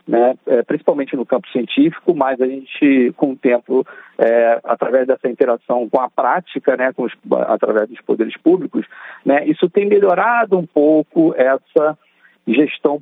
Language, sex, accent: Portuguese, male, Brazilian